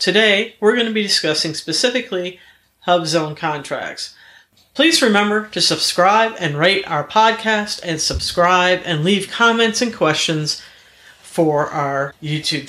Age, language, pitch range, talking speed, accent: 50-69, English, 155-215 Hz, 130 wpm, American